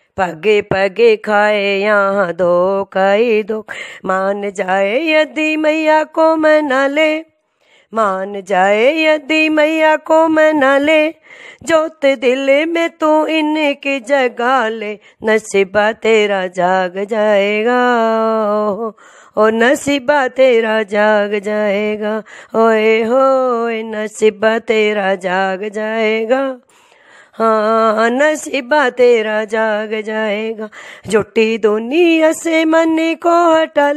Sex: female